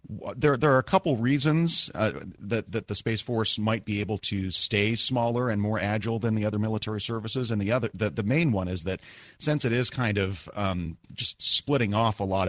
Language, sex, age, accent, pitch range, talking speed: English, male, 30-49, American, 90-110 Hz, 220 wpm